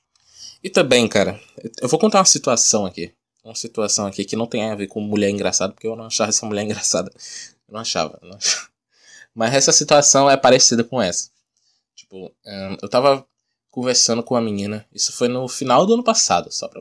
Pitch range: 115-155 Hz